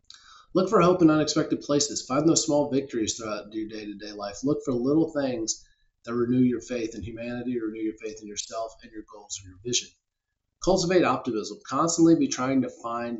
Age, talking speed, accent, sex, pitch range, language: 30-49, 195 wpm, American, male, 115-155 Hz, English